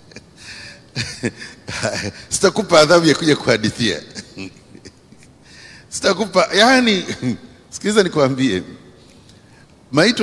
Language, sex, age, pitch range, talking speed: English, male, 50-69, 130-185 Hz, 65 wpm